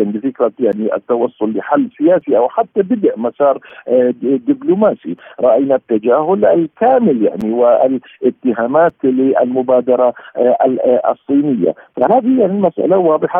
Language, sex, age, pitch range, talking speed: Arabic, male, 50-69, 130-215 Hz, 90 wpm